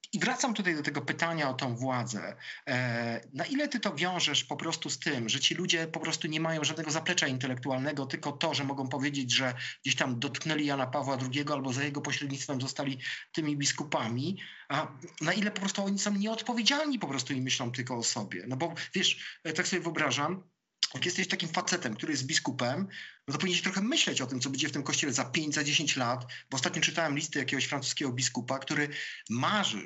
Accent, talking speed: native, 205 wpm